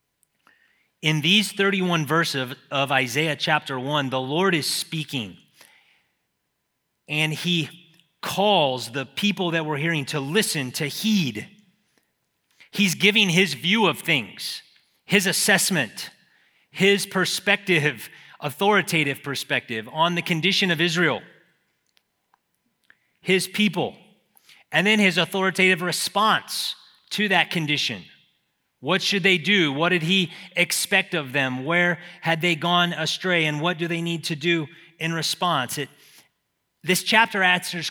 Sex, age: male, 30-49